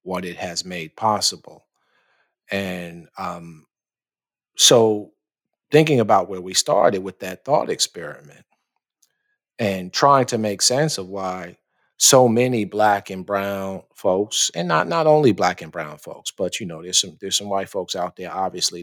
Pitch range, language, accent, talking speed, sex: 85-105 Hz, English, American, 160 wpm, male